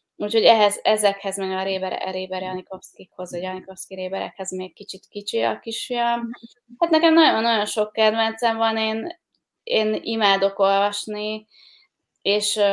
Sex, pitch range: female, 185-205 Hz